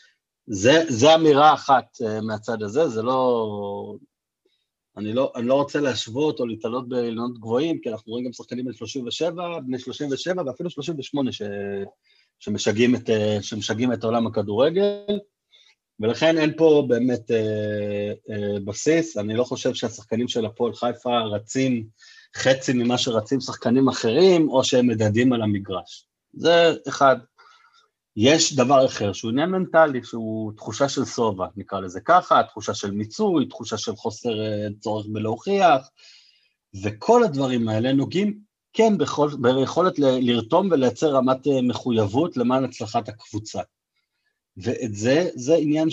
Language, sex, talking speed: Hebrew, male, 130 wpm